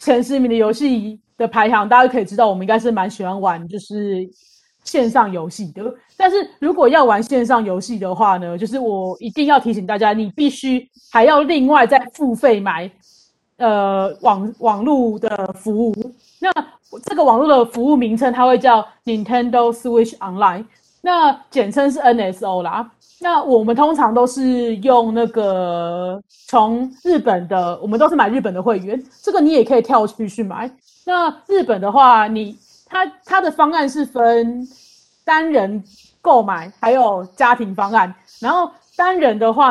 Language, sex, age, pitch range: Chinese, female, 30-49, 210-275 Hz